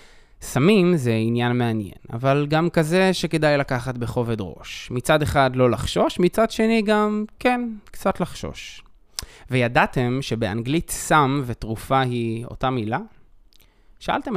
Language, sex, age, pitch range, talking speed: Hebrew, male, 20-39, 115-150 Hz, 120 wpm